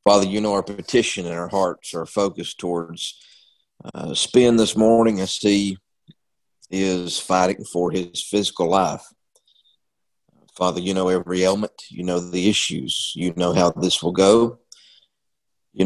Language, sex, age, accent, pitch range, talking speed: English, male, 40-59, American, 90-105 Hz, 150 wpm